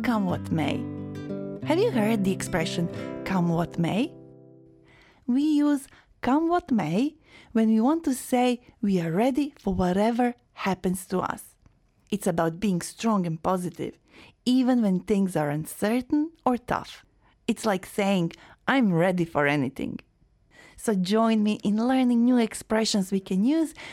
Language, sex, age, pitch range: Korean, female, 30-49, 185-260 Hz